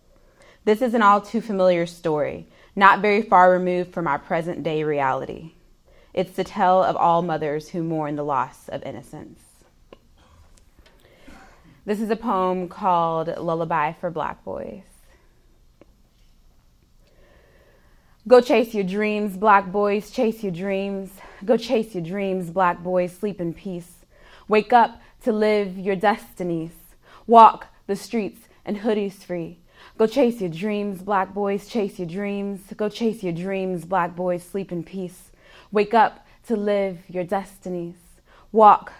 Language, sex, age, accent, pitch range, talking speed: English, female, 20-39, American, 175-215 Hz, 135 wpm